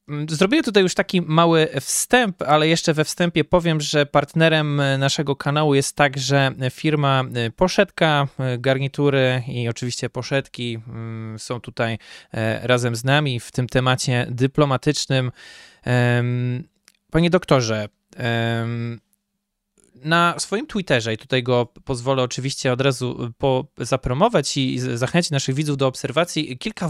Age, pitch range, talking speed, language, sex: 20-39, 125-155 Hz, 115 wpm, Polish, male